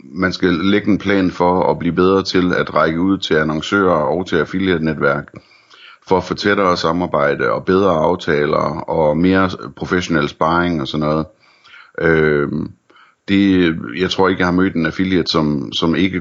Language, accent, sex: Danish, native, male